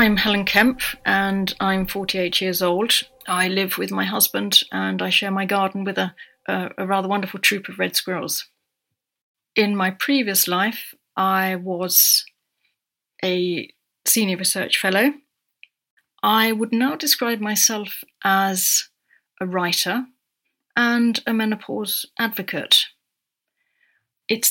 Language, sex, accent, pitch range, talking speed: English, female, British, 175-205 Hz, 120 wpm